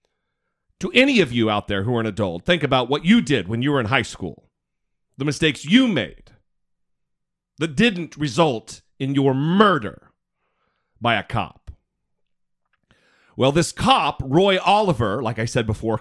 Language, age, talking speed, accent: English, 40-59, 160 wpm, American